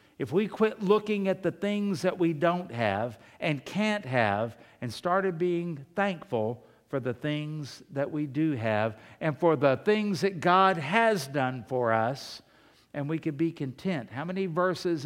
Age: 60-79